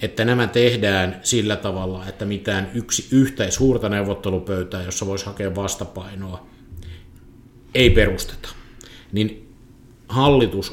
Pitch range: 100-120 Hz